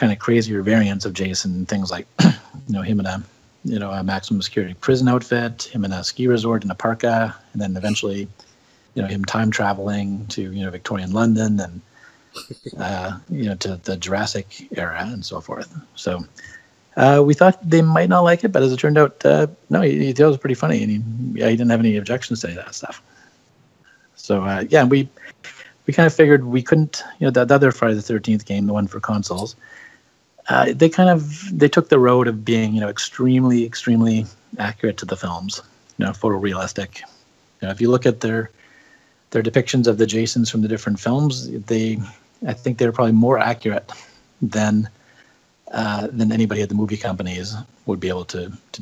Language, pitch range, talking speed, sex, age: English, 100-125 Hz, 205 wpm, male, 40-59